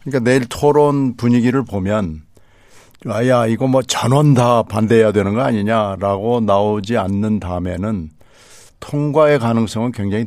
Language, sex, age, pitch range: Korean, male, 60-79, 95-115 Hz